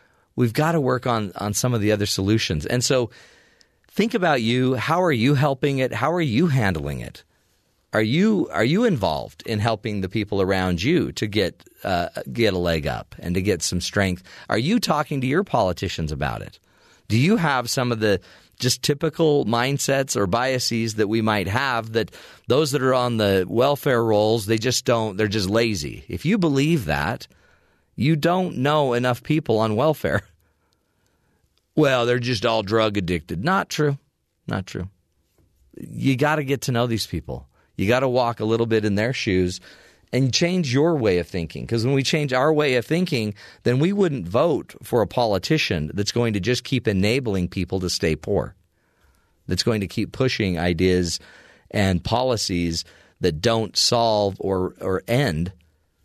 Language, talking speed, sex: English, 180 wpm, male